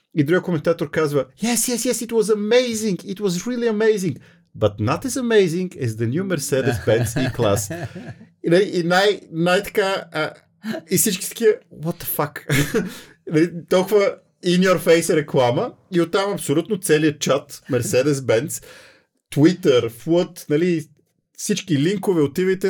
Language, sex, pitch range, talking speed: Bulgarian, male, 125-190 Hz, 125 wpm